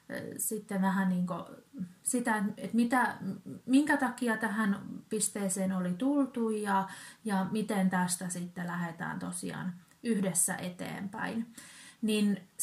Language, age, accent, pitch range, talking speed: Finnish, 30-49, native, 185-230 Hz, 110 wpm